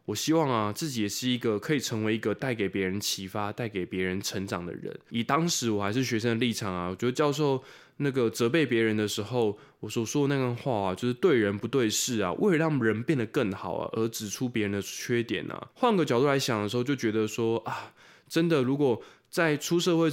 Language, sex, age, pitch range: Chinese, male, 20-39, 105-145 Hz